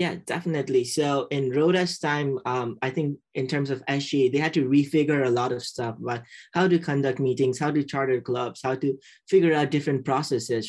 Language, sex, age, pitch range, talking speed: English, male, 20-39, 125-150 Hz, 200 wpm